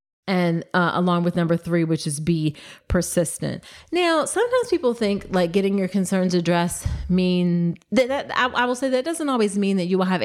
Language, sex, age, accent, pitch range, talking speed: English, female, 30-49, American, 175-215 Hz, 205 wpm